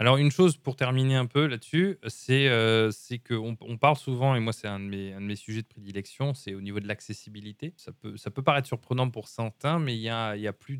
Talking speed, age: 265 wpm, 20-39